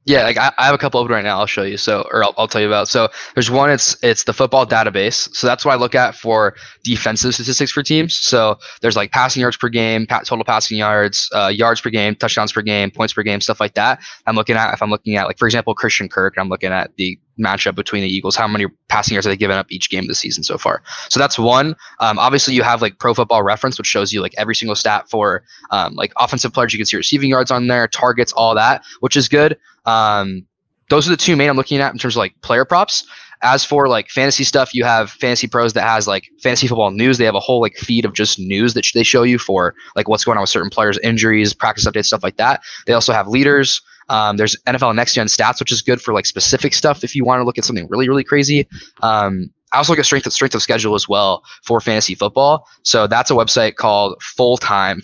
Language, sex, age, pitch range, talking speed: English, male, 10-29, 105-130 Hz, 260 wpm